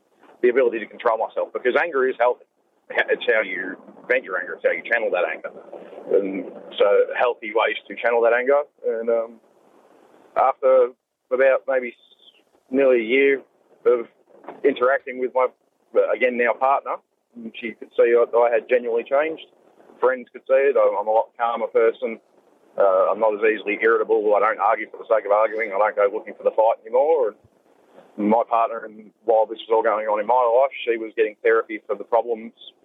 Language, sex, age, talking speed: English, male, 40-59, 190 wpm